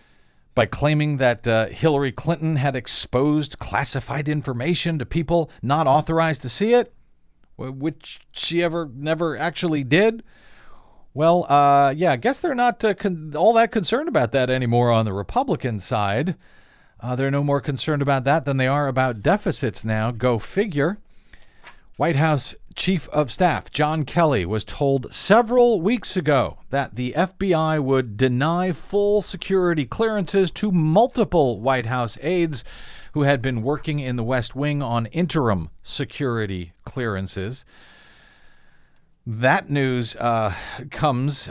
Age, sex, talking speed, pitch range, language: 50-69, male, 140 wpm, 120-165 Hz, English